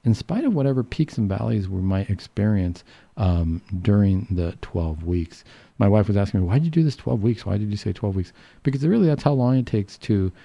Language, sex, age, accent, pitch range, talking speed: English, male, 40-59, American, 95-120 Hz, 230 wpm